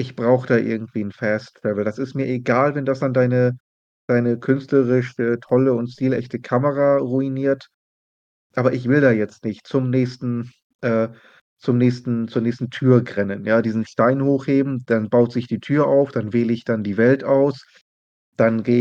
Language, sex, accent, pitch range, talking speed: German, male, German, 115-135 Hz, 180 wpm